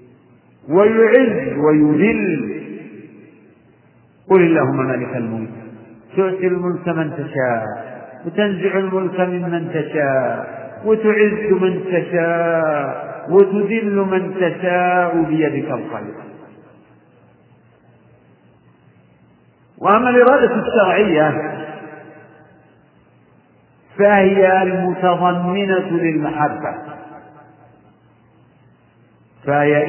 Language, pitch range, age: Arabic, 140-190 Hz, 50-69